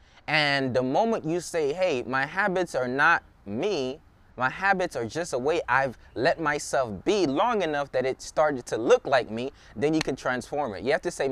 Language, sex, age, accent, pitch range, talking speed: English, male, 20-39, American, 130-165 Hz, 205 wpm